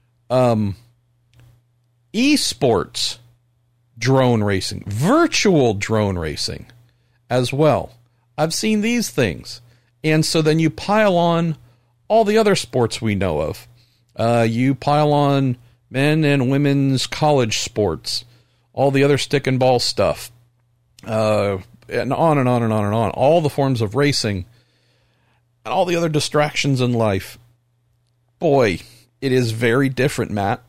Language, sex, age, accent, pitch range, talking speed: English, male, 50-69, American, 115-135 Hz, 135 wpm